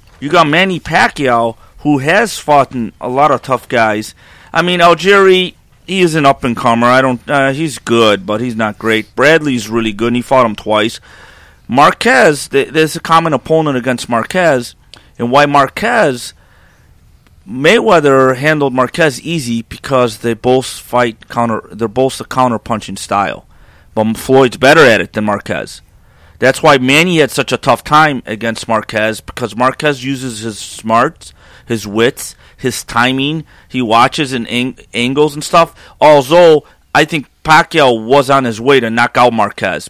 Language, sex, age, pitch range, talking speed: English, male, 30-49, 115-150 Hz, 160 wpm